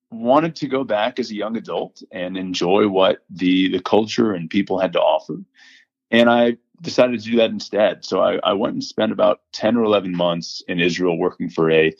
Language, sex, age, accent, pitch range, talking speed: English, male, 30-49, American, 90-130 Hz, 210 wpm